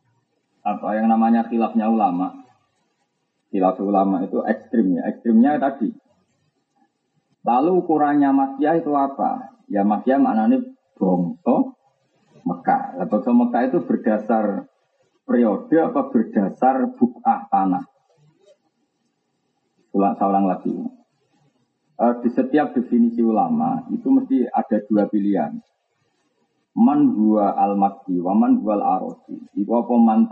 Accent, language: native, Indonesian